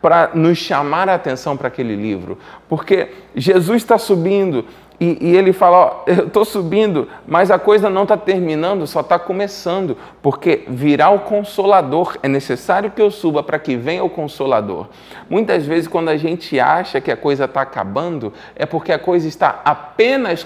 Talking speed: 175 wpm